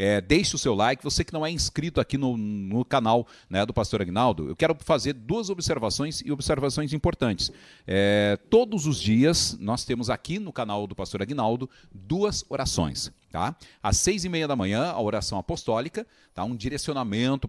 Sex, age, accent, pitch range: male, 40-59, Brazilian, 105-145 Hz